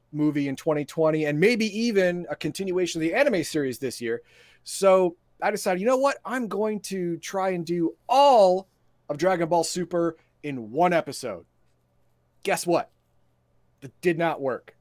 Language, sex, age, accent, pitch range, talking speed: English, male, 30-49, American, 140-180 Hz, 160 wpm